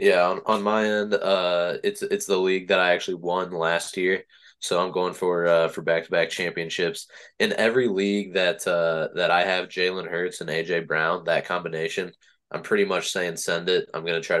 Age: 20-39